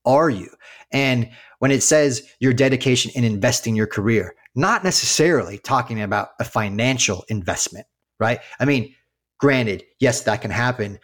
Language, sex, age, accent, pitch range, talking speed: English, male, 30-49, American, 110-130 Hz, 145 wpm